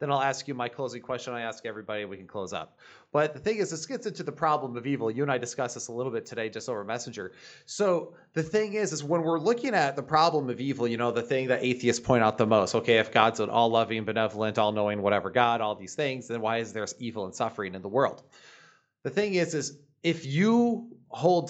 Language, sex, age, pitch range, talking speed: English, male, 30-49, 120-150 Hz, 250 wpm